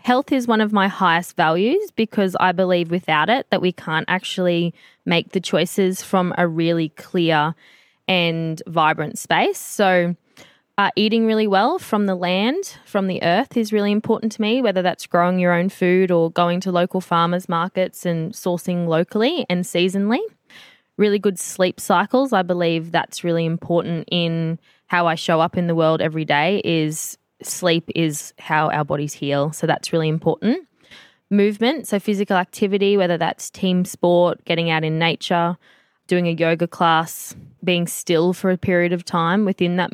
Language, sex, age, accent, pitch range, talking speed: English, female, 10-29, Australian, 170-200 Hz, 170 wpm